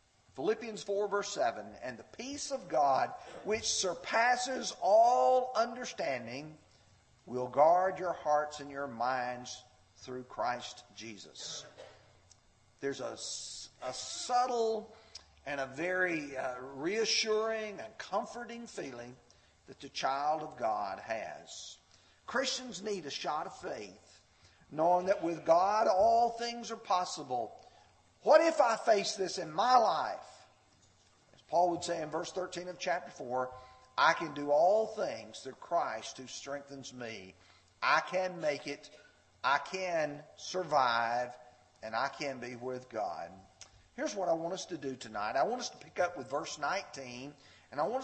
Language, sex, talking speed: English, male, 145 wpm